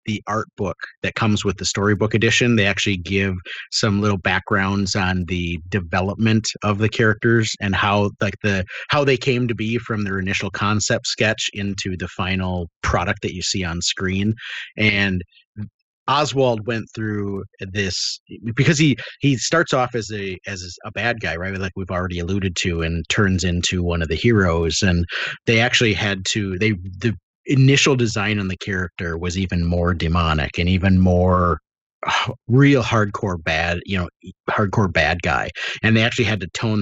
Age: 30-49